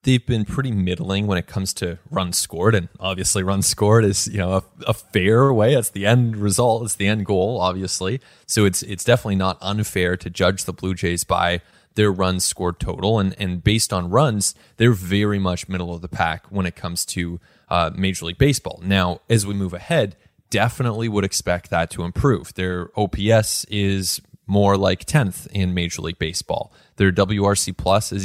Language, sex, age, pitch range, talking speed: English, male, 20-39, 95-115 Hz, 195 wpm